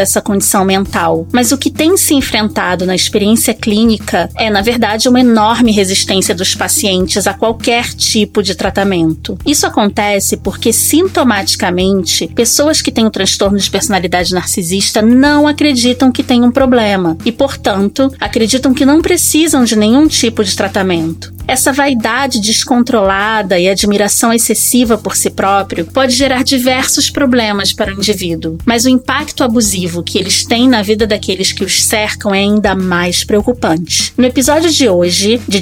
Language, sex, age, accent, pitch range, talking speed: Portuguese, female, 20-39, Brazilian, 195-260 Hz, 155 wpm